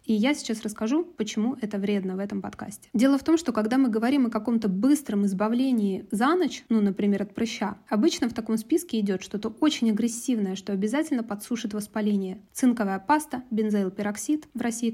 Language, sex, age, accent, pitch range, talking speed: Russian, female, 20-39, native, 210-255 Hz, 175 wpm